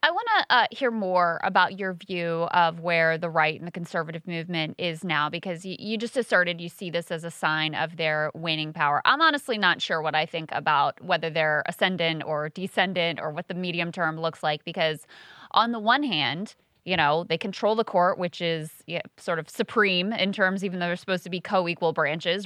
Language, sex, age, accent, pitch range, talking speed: English, female, 20-39, American, 165-205 Hz, 215 wpm